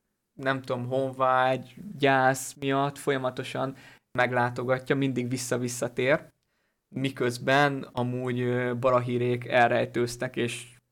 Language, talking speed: Hungarian, 75 wpm